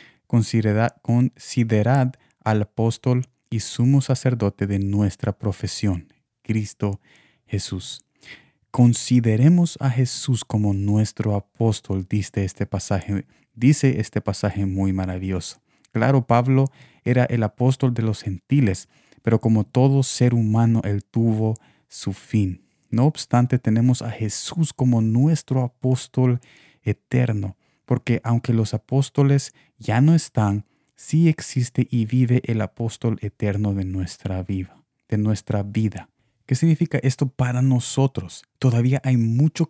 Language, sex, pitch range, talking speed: Spanish, male, 110-130 Hz, 110 wpm